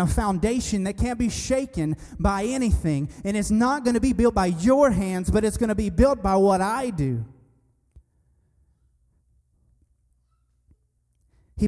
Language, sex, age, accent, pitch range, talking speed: English, male, 30-49, American, 160-205 Hz, 150 wpm